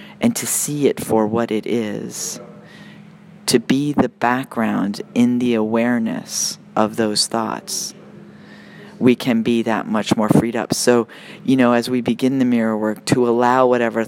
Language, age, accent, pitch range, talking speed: English, 40-59, American, 115-140 Hz, 160 wpm